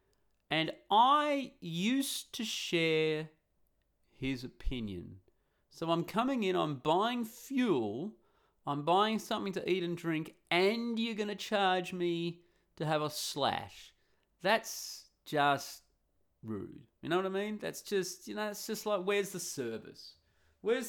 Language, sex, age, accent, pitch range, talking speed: English, male, 30-49, Australian, 115-190 Hz, 145 wpm